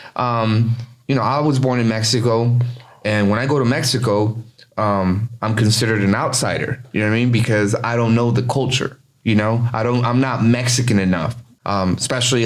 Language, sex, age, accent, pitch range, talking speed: English, male, 20-39, American, 110-130 Hz, 195 wpm